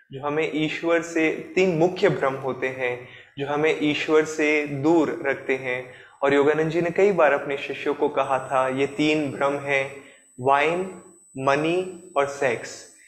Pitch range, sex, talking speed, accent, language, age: 140-170 Hz, male, 160 wpm, native, Hindi, 20-39